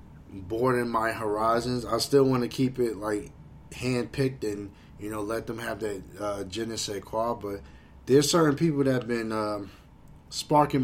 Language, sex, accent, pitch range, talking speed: English, male, American, 100-125 Hz, 170 wpm